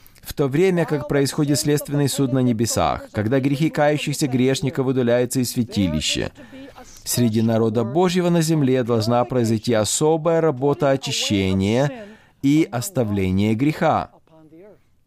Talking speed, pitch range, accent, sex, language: 115 wpm, 110-150 Hz, native, male, Russian